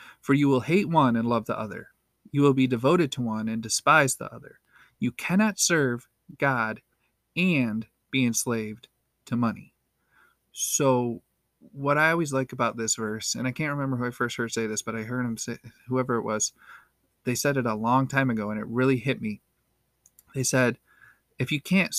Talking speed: 195 wpm